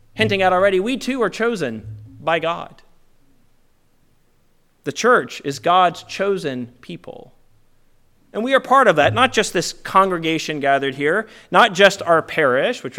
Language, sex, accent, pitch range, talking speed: English, male, American, 145-220 Hz, 150 wpm